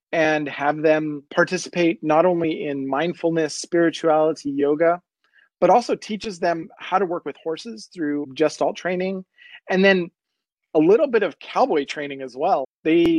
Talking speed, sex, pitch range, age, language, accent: 155 wpm, male, 145-180 Hz, 30-49, English, American